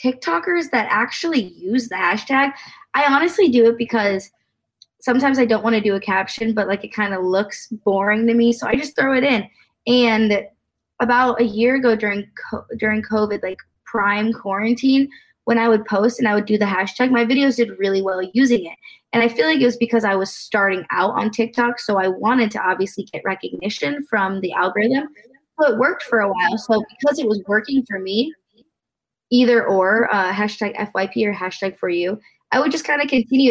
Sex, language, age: female, English, 20-39